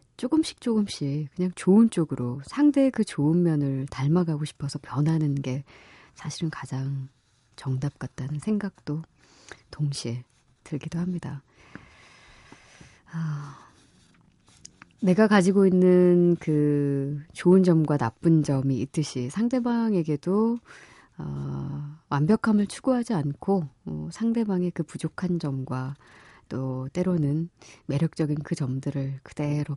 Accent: native